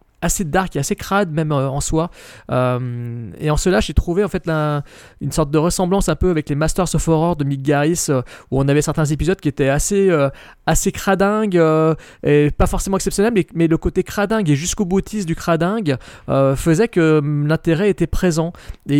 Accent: French